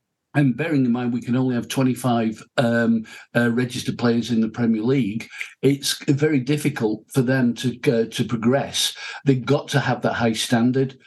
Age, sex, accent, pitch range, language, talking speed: 50-69, male, British, 120-135 Hz, English, 180 wpm